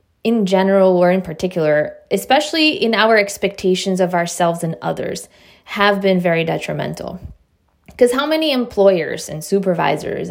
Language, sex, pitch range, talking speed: English, female, 175-220 Hz, 135 wpm